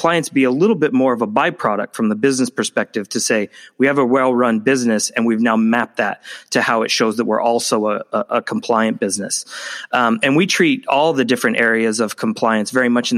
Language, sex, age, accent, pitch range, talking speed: English, male, 20-39, American, 110-130 Hz, 225 wpm